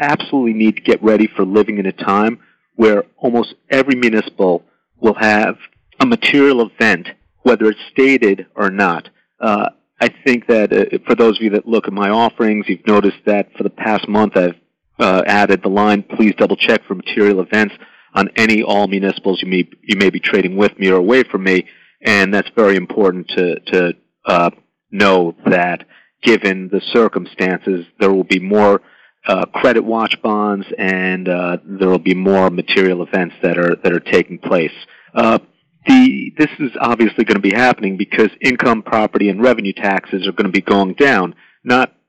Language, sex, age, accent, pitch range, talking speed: English, male, 40-59, American, 95-110 Hz, 185 wpm